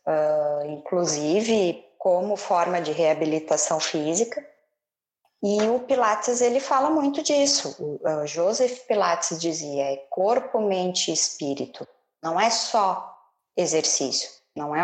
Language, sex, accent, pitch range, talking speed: Portuguese, female, Brazilian, 170-215 Hz, 120 wpm